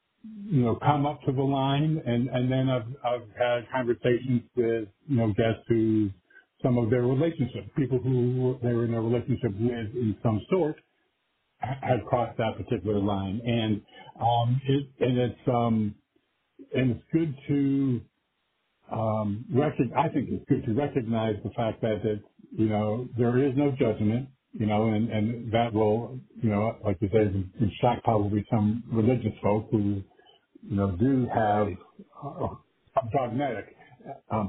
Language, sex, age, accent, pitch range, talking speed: English, male, 50-69, American, 110-135 Hz, 160 wpm